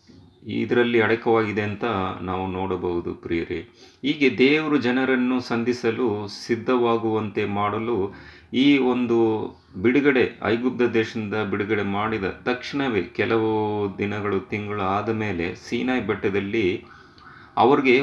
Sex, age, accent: male, 30-49, native